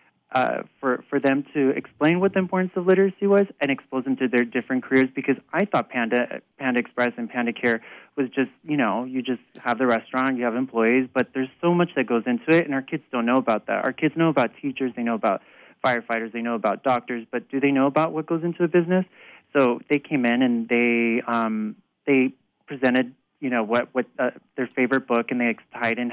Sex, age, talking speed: male, 30-49, 225 wpm